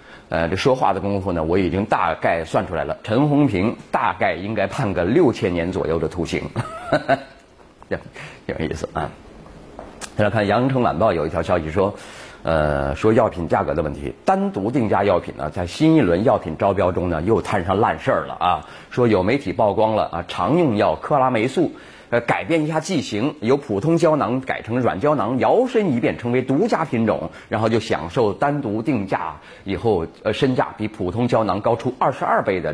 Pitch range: 95-135 Hz